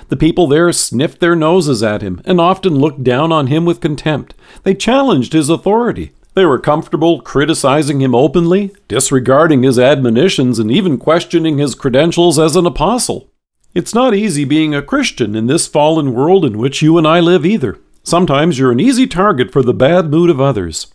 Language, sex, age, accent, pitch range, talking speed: English, male, 50-69, American, 130-175 Hz, 185 wpm